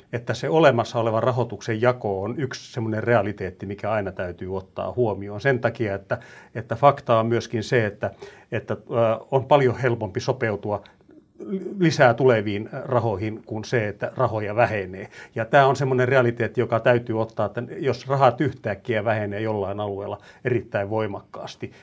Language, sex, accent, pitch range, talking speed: Finnish, male, native, 105-130 Hz, 150 wpm